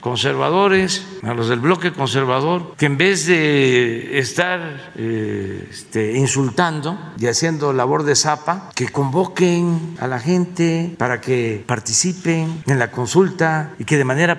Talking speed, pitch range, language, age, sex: 140 wpm, 135-180 Hz, Spanish, 60-79, male